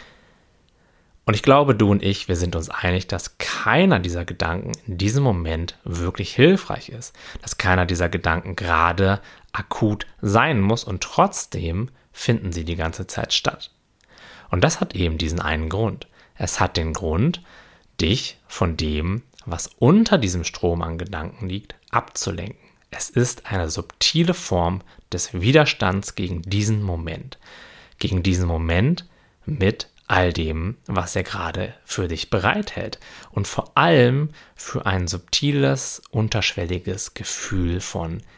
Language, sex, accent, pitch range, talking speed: German, male, German, 85-115 Hz, 140 wpm